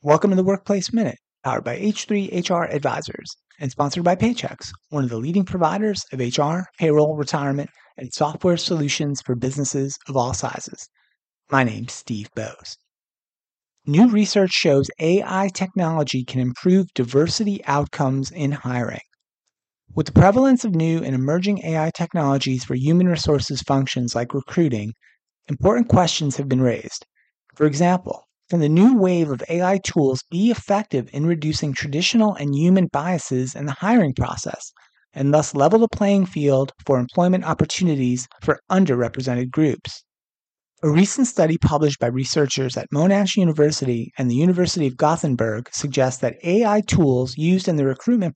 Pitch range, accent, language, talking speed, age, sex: 135-180 Hz, American, English, 150 wpm, 30-49, male